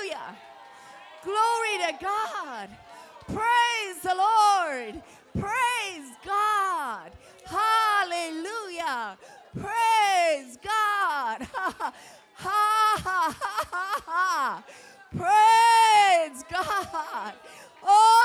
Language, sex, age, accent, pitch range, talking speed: English, female, 40-59, American, 340-430 Hz, 75 wpm